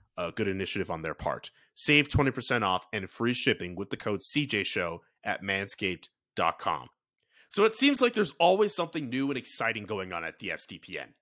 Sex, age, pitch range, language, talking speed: male, 30-49, 120-190 Hz, English, 175 wpm